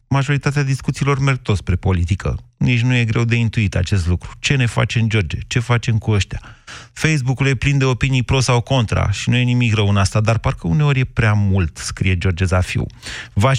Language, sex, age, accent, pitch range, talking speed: Romanian, male, 30-49, native, 110-130 Hz, 210 wpm